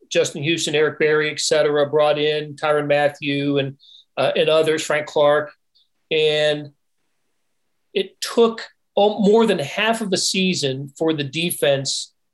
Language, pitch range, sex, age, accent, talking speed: English, 145-190 Hz, male, 40-59, American, 140 wpm